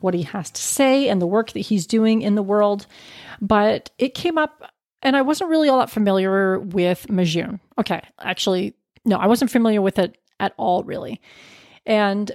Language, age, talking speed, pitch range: English, 30-49, 190 wpm, 190-235 Hz